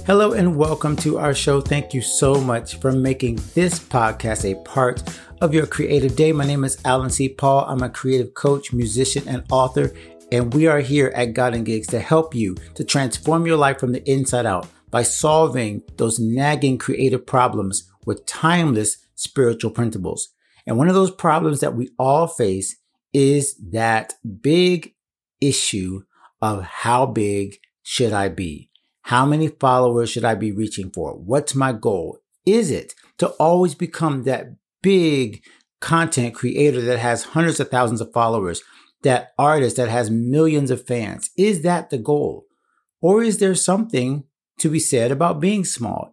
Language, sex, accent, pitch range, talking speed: English, male, American, 115-155 Hz, 170 wpm